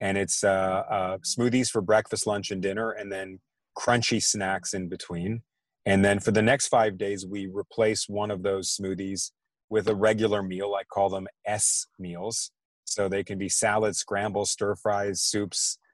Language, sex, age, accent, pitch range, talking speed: English, male, 30-49, American, 95-115 Hz, 175 wpm